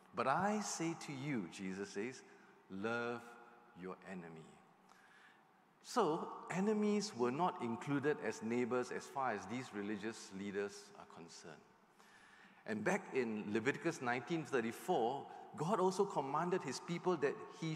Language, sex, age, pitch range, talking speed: English, male, 50-69, 120-180 Hz, 125 wpm